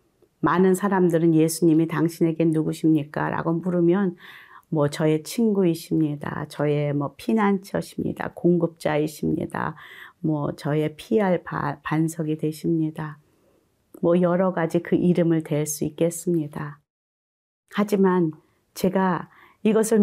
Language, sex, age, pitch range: Korean, female, 40-59, 165-200 Hz